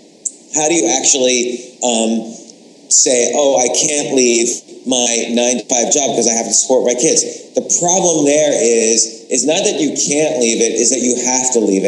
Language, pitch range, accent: English, 115-135 Hz, American